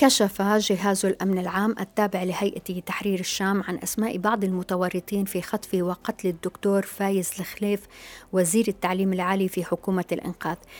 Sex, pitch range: female, 185-215 Hz